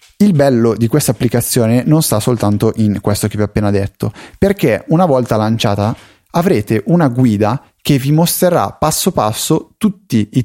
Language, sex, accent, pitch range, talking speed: Italian, male, native, 110-150 Hz, 165 wpm